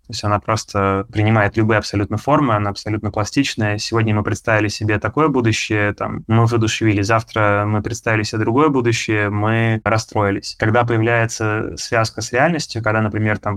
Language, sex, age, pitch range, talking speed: Russian, male, 20-39, 105-120 Hz, 160 wpm